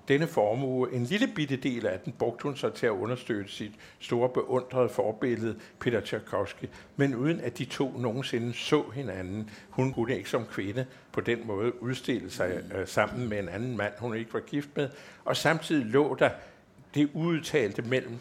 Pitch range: 100-130 Hz